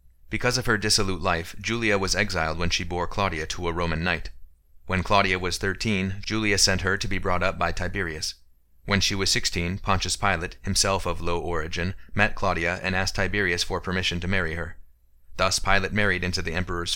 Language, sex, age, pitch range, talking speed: English, male, 30-49, 85-100 Hz, 195 wpm